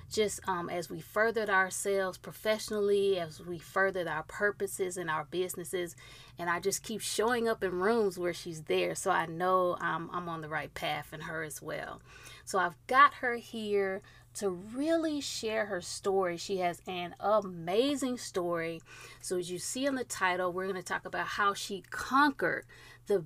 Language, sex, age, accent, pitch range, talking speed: English, female, 30-49, American, 170-220 Hz, 180 wpm